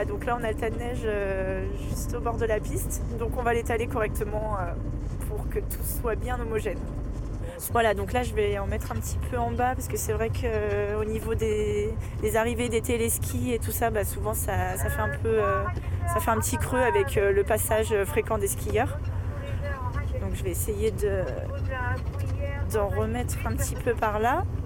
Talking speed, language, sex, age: 195 wpm, French, female, 20-39